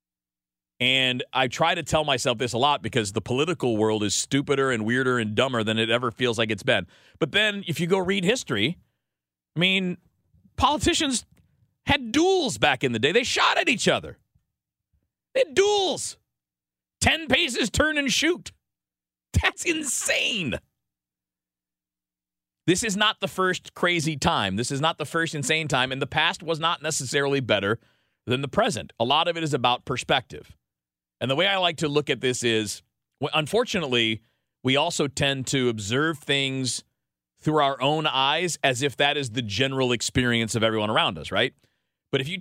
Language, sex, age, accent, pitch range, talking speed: English, male, 40-59, American, 110-160 Hz, 175 wpm